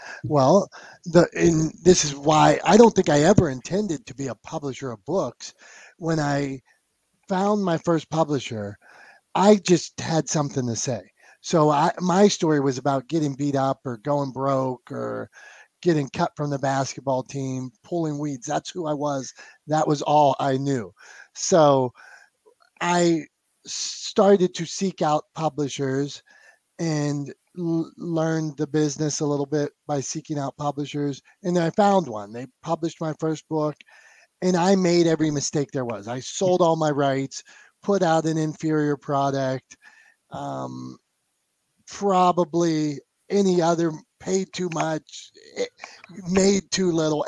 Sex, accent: male, American